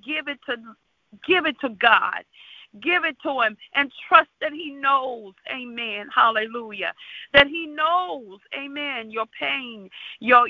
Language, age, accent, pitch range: English, 50-69, American, 235-295 Hz